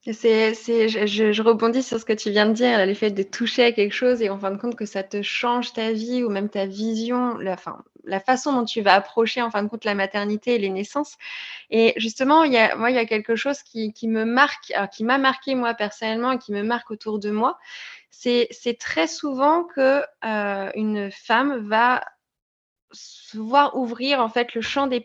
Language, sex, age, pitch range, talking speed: French, female, 20-39, 215-260 Hz, 230 wpm